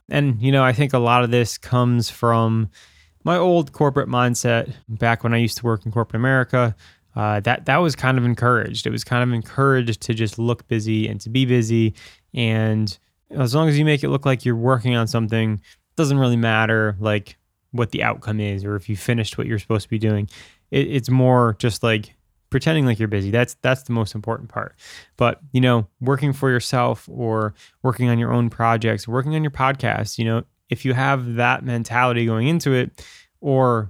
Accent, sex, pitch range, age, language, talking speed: American, male, 110-125 Hz, 20-39, English, 210 wpm